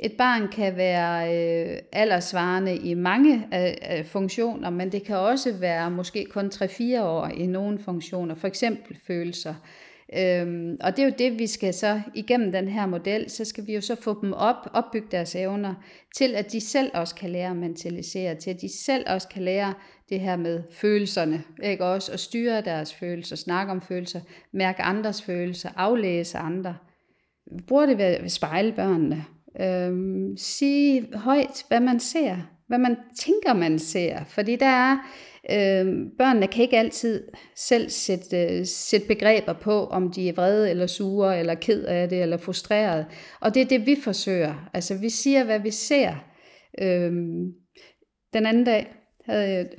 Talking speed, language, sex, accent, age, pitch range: 165 wpm, Danish, female, native, 40-59, 175-225 Hz